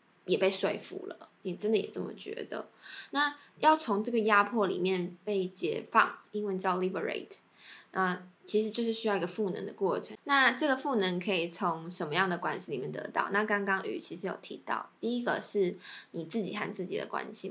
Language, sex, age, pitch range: Chinese, female, 10-29, 185-230 Hz